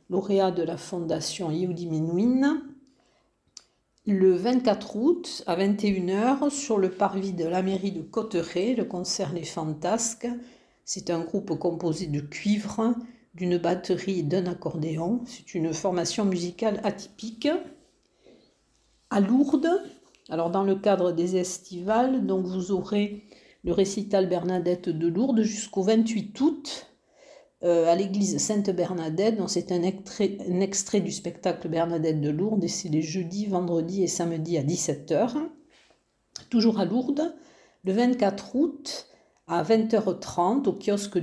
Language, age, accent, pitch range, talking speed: French, 50-69, French, 175-220 Hz, 135 wpm